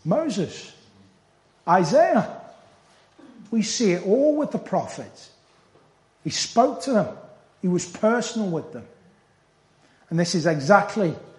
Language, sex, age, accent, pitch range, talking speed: English, male, 40-59, British, 160-220 Hz, 115 wpm